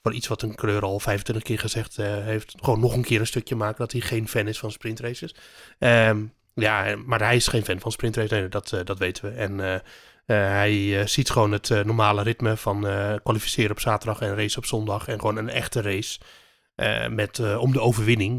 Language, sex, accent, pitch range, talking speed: Dutch, male, Dutch, 105-120 Hz, 230 wpm